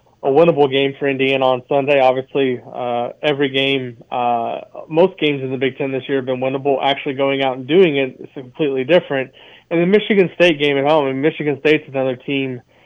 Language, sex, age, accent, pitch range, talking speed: English, male, 20-39, American, 130-150 Hz, 210 wpm